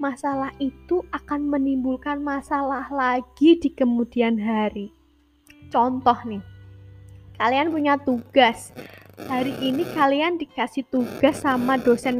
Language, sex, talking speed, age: Indonesian, female, 105 wpm, 10-29